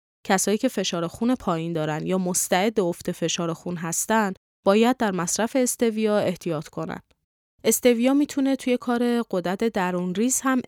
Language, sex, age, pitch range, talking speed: Persian, female, 20-39, 175-230 Hz, 145 wpm